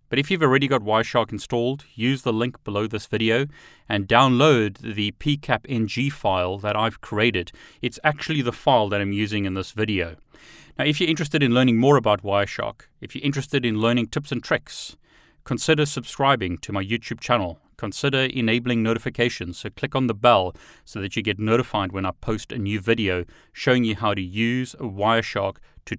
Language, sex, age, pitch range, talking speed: English, male, 30-49, 105-130 Hz, 185 wpm